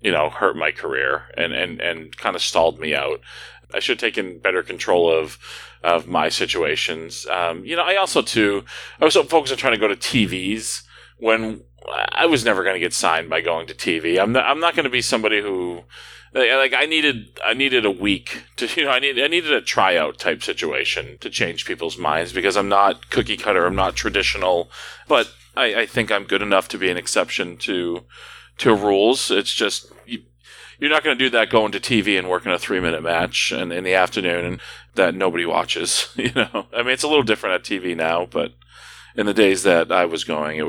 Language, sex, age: English, male, 30-49